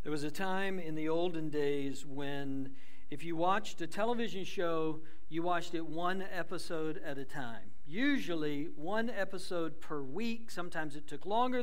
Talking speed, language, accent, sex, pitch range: 165 wpm, English, American, male, 160-230 Hz